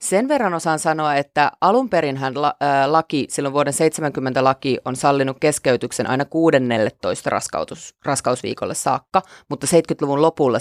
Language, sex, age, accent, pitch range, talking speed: Finnish, female, 30-49, native, 135-165 Hz, 120 wpm